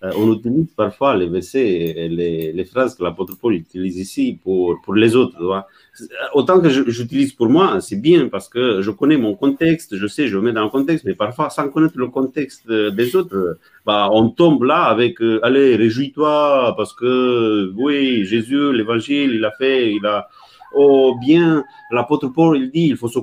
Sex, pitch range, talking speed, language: male, 110-150 Hz, 190 wpm, French